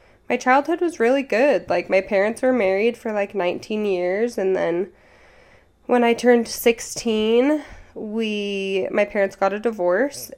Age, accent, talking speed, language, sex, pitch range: 10-29, American, 150 wpm, English, female, 185-220 Hz